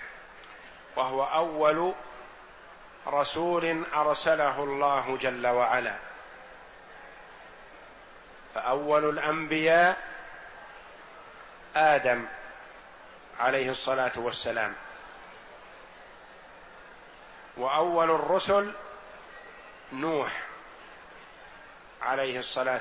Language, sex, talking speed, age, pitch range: Arabic, male, 45 wpm, 50-69, 135-170 Hz